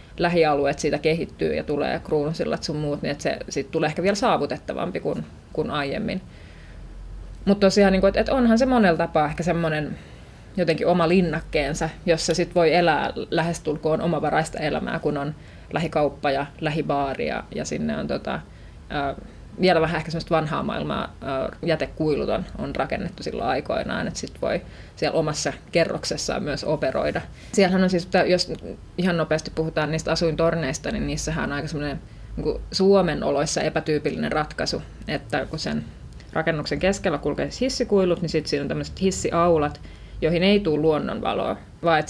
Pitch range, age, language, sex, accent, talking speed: 155-185 Hz, 30-49, Finnish, female, native, 150 wpm